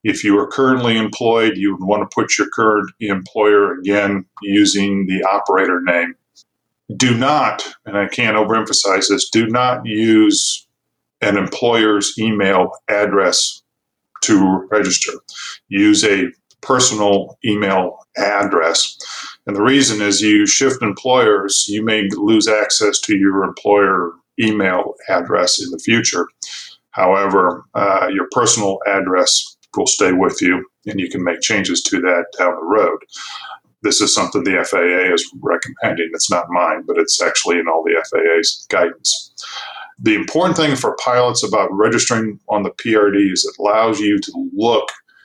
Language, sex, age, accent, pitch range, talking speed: English, male, 40-59, American, 100-125 Hz, 145 wpm